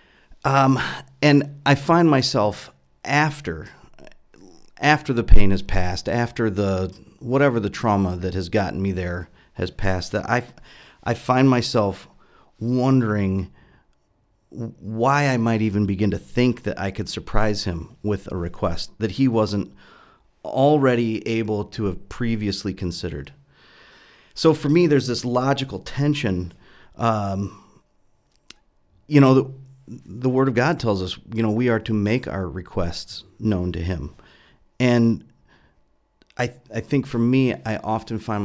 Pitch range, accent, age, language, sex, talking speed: 95-125 Hz, American, 40-59, English, male, 140 wpm